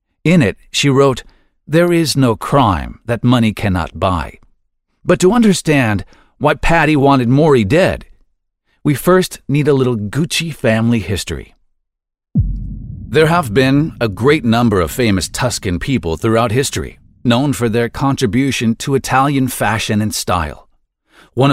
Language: English